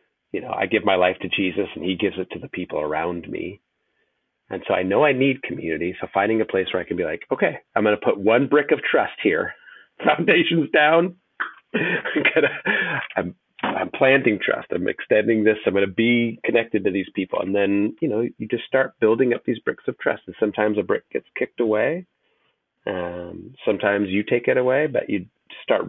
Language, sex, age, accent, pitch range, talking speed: English, male, 30-49, American, 95-125 Hz, 210 wpm